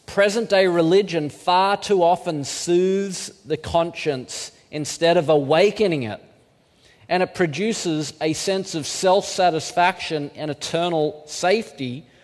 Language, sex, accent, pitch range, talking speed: English, male, Australian, 145-190 Hz, 110 wpm